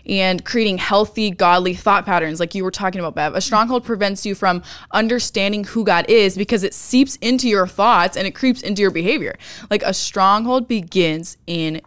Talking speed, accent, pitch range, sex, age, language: 190 wpm, American, 185-230 Hz, female, 20-39, English